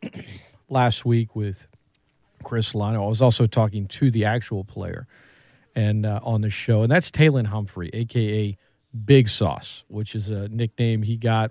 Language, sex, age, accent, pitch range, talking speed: English, male, 40-59, American, 105-135 Hz, 160 wpm